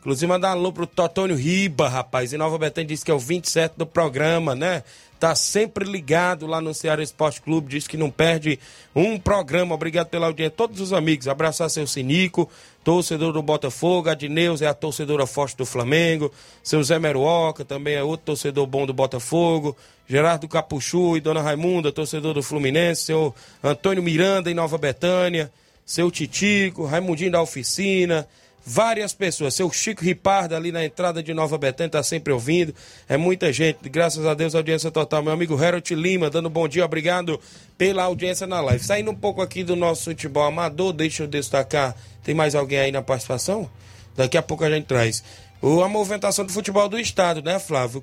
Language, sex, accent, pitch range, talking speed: Portuguese, male, Brazilian, 150-180 Hz, 180 wpm